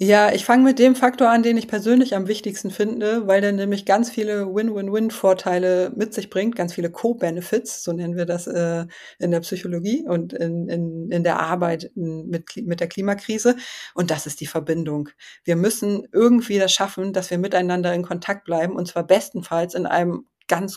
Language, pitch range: German, 175-210 Hz